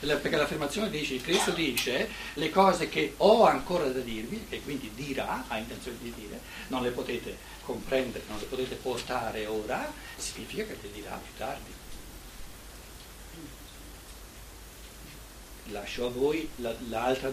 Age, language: 60-79, Italian